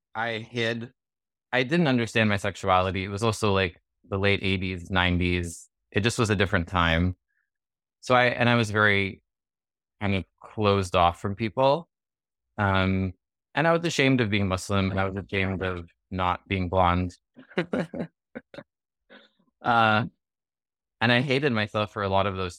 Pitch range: 95-115 Hz